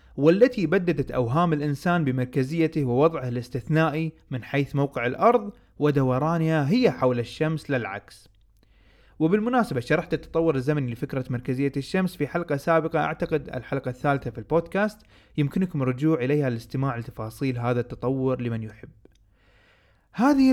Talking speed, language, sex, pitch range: 120 wpm, Arabic, male, 125-170 Hz